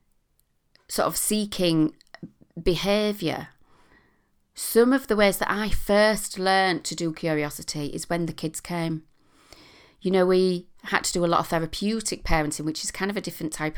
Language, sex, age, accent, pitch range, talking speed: English, female, 40-59, British, 160-200 Hz, 165 wpm